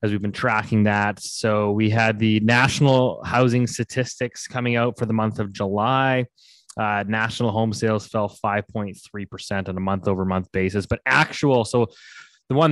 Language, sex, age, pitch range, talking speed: English, male, 20-39, 100-120 Hz, 170 wpm